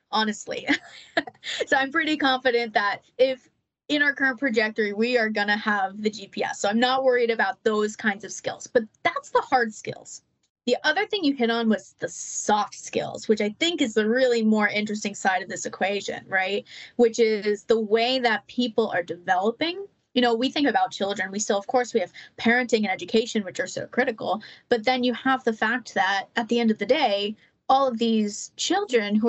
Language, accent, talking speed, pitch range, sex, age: English, American, 205 wpm, 210-260 Hz, female, 20-39